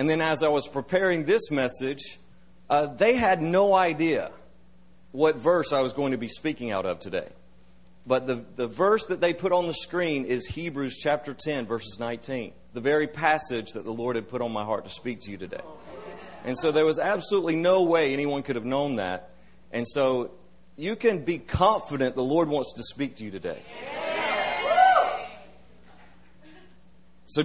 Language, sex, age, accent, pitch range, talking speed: English, male, 40-59, American, 125-170 Hz, 180 wpm